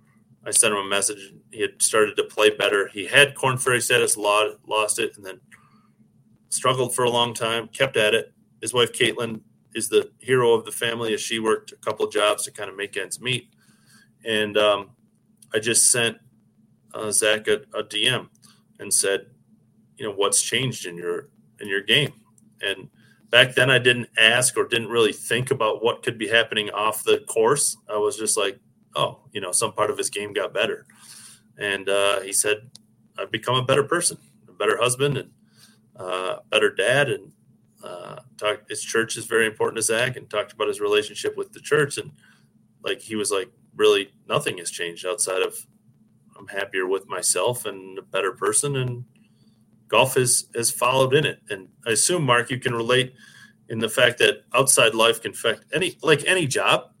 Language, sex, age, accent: English, male, 30-49, American